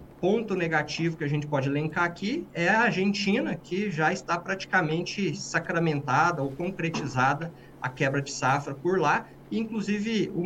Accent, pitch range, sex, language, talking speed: Brazilian, 155-195 Hz, male, Portuguese, 150 wpm